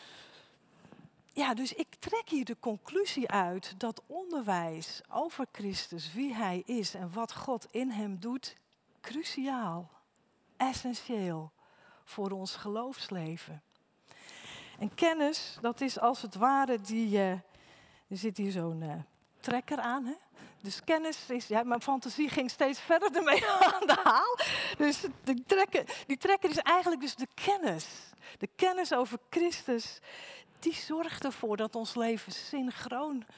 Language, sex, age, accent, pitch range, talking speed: Dutch, female, 40-59, Dutch, 210-295 Hz, 135 wpm